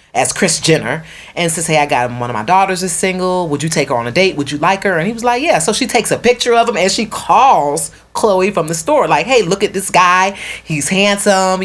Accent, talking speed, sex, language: American, 270 wpm, female, English